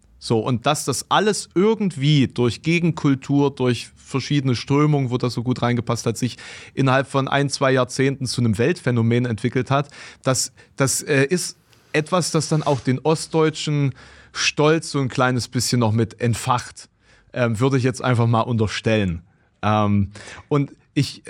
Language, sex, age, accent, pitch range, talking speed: German, male, 30-49, German, 115-140 Hz, 155 wpm